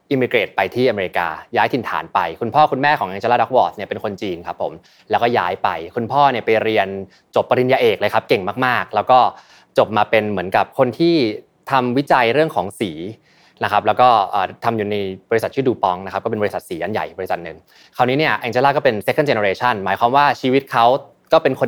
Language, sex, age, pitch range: Thai, male, 20-39, 105-135 Hz